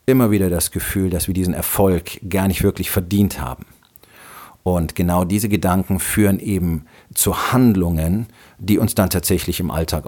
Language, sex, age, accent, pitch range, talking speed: German, male, 40-59, German, 85-100 Hz, 160 wpm